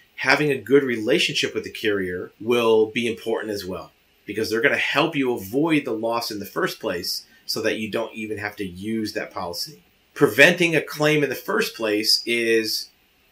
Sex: male